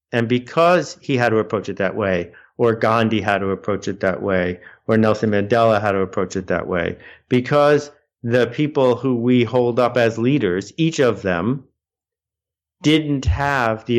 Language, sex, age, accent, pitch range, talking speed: English, male, 50-69, American, 100-125 Hz, 175 wpm